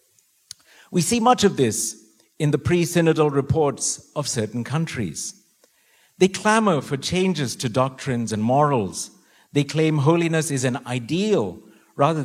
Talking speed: 130 wpm